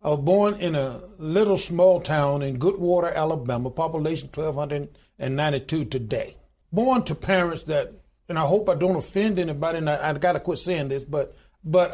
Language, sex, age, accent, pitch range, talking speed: English, male, 60-79, American, 150-190 Hz, 170 wpm